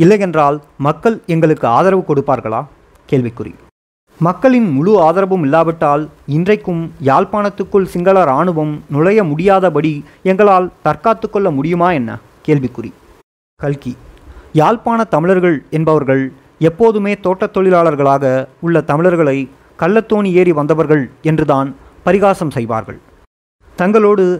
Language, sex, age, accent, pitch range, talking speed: Tamil, male, 30-49, native, 140-190 Hz, 95 wpm